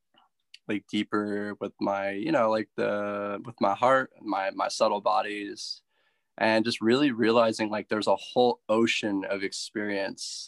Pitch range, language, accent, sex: 100-115 Hz, English, American, male